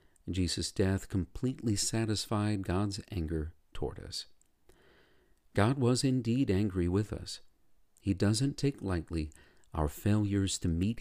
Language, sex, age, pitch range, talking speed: English, male, 50-69, 85-115 Hz, 120 wpm